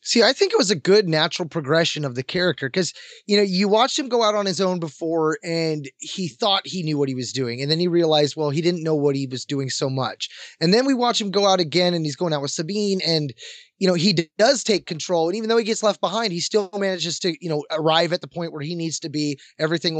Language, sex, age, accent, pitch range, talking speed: English, male, 20-39, American, 165-215 Hz, 275 wpm